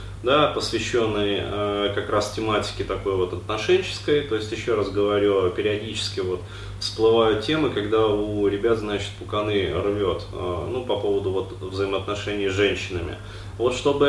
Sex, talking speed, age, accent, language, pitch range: male, 145 wpm, 20-39, native, Russian, 100-110 Hz